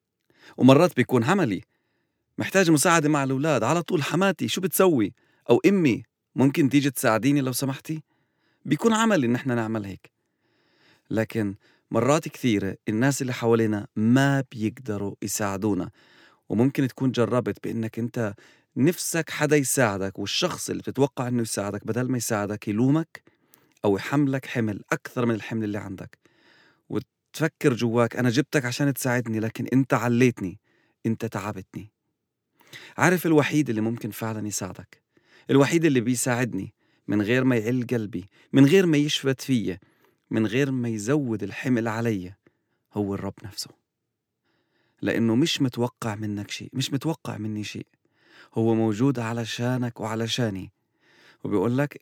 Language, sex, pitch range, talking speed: English, male, 110-140 Hz, 130 wpm